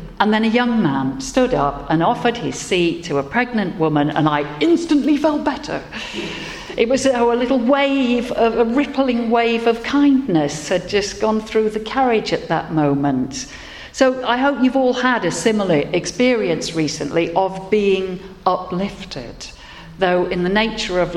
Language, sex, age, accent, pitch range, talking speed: English, female, 50-69, British, 160-230 Hz, 160 wpm